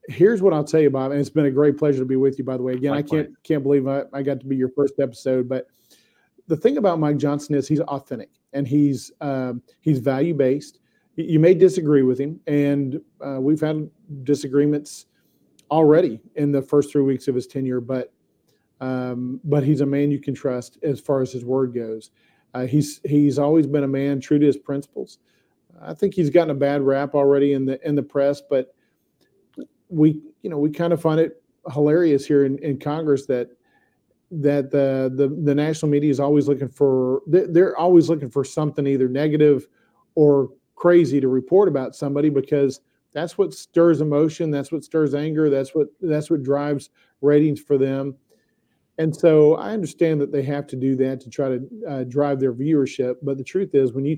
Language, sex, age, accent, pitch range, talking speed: English, male, 40-59, American, 135-150 Hz, 205 wpm